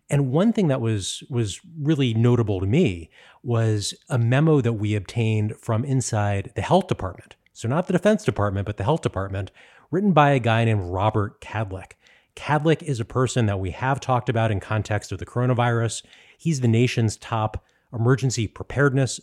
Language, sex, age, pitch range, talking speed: English, male, 30-49, 105-135 Hz, 180 wpm